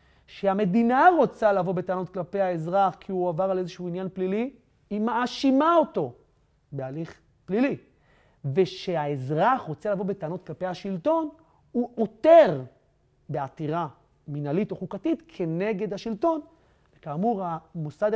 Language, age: Hebrew, 30-49